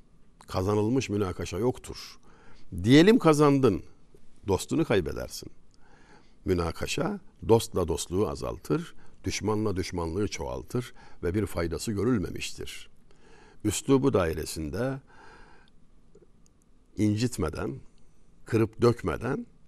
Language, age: Turkish, 60-79